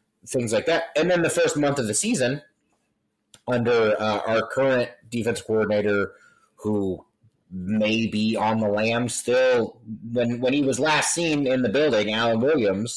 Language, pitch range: English, 105-125 Hz